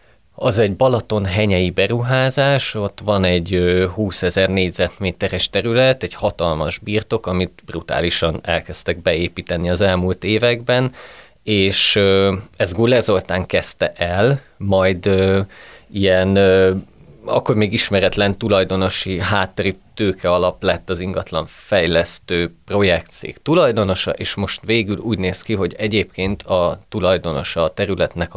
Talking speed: 110 wpm